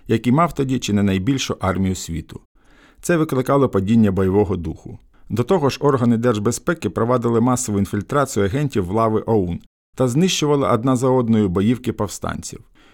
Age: 50-69